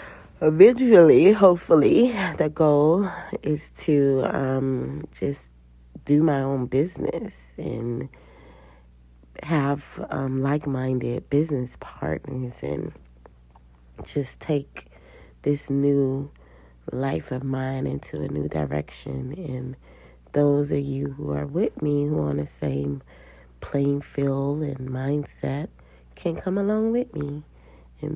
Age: 30-49